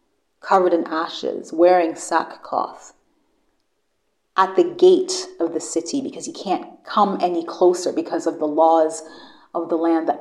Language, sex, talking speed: English, female, 145 wpm